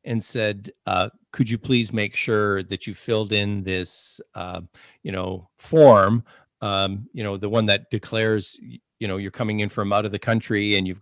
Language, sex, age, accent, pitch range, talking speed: English, male, 50-69, American, 100-130 Hz, 195 wpm